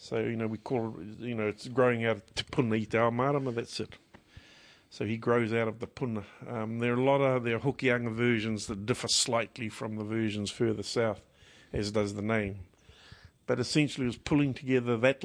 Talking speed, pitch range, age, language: 205 wpm, 100-120 Hz, 50-69, English